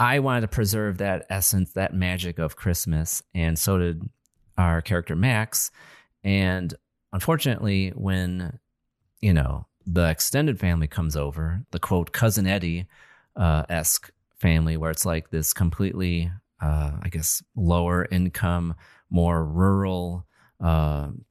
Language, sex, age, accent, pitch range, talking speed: English, male, 30-49, American, 85-105 Hz, 125 wpm